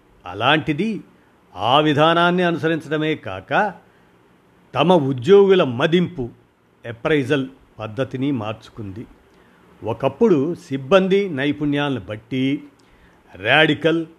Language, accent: Telugu, native